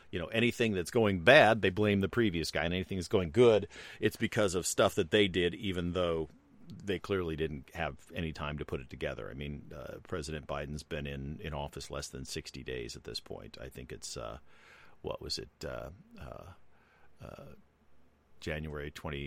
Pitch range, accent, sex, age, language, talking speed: 75-95 Hz, American, male, 40-59, English, 195 wpm